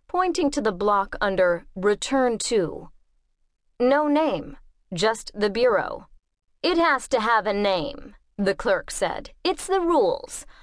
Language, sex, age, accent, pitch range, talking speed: English, female, 30-49, American, 190-265 Hz, 135 wpm